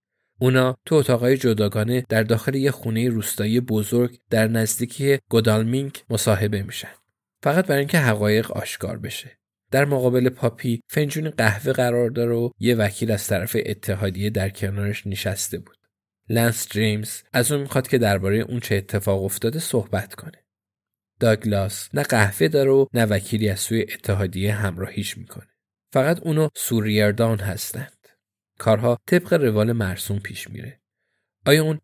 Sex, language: male, Persian